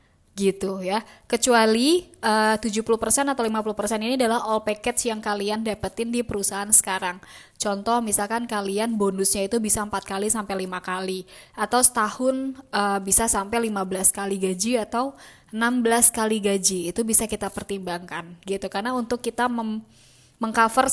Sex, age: female, 20-39